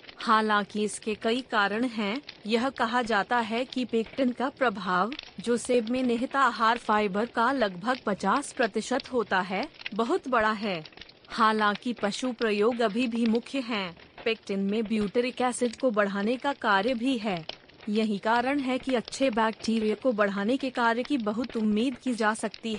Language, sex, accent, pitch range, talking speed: Hindi, female, native, 210-250 Hz, 160 wpm